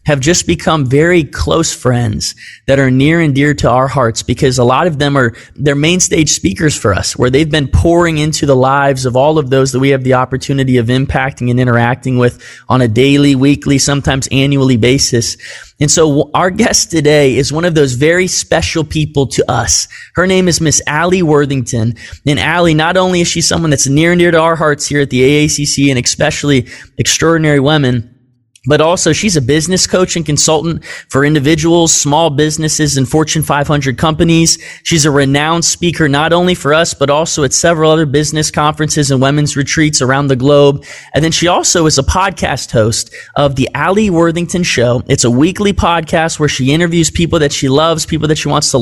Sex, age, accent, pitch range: male, 20-39, American, 135-165 Hz